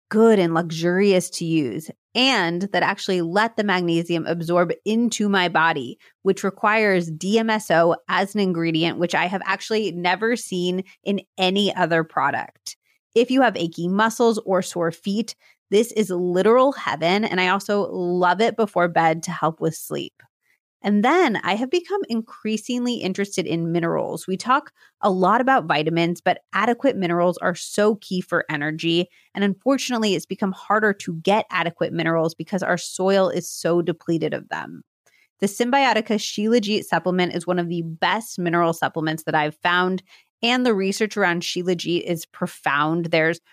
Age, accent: 30-49, American